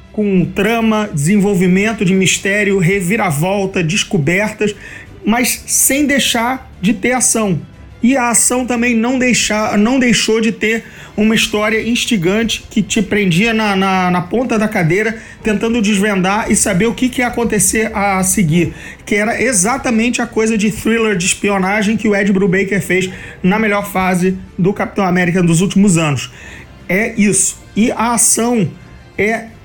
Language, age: Portuguese, 40-59